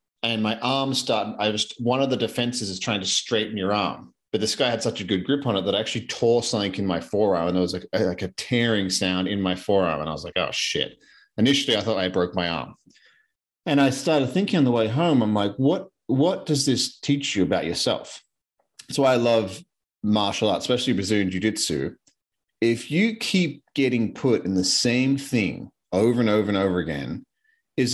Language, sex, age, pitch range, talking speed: English, male, 40-59, 95-130 Hz, 215 wpm